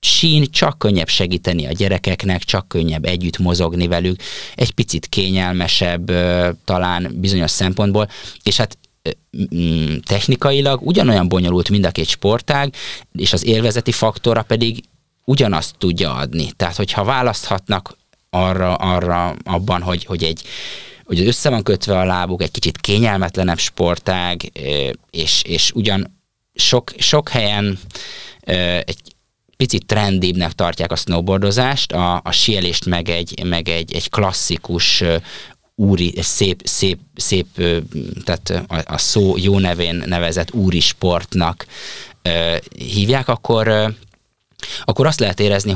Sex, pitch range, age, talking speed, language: male, 85-105 Hz, 20-39, 120 wpm, Hungarian